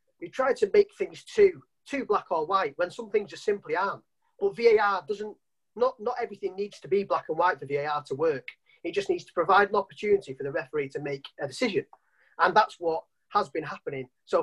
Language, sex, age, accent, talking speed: English, male, 30-49, British, 220 wpm